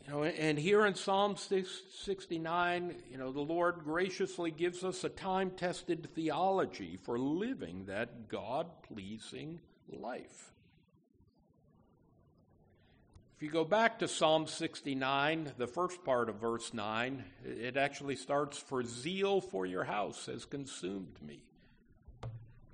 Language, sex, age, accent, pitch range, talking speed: English, male, 60-79, American, 120-170 Hz, 125 wpm